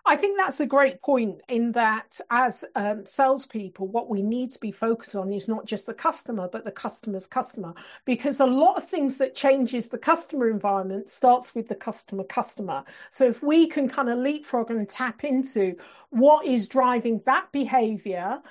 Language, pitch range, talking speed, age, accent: English, 205-260 Hz, 180 wpm, 50-69, British